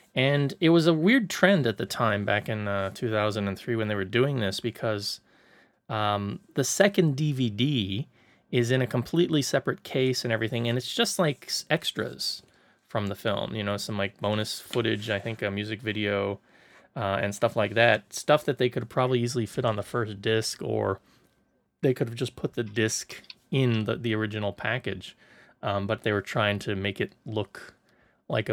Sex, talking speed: male, 185 wpm